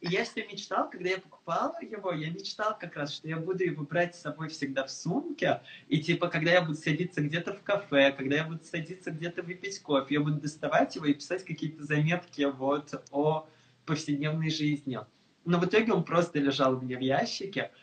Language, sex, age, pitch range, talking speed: Russian, male, 20-39, 145-175 Hz, 200 wpm